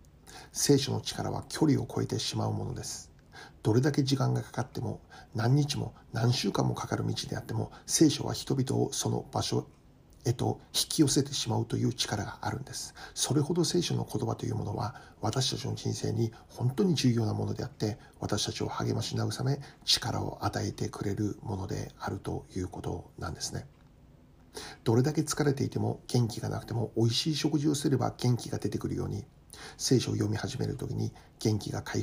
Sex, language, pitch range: male, Japanese, 110-135 Hz